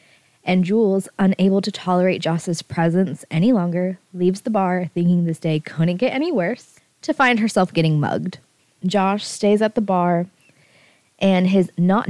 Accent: American